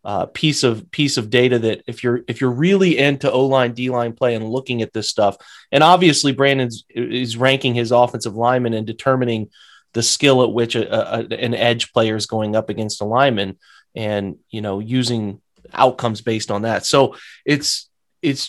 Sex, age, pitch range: male, 30-49, 120-140 Hz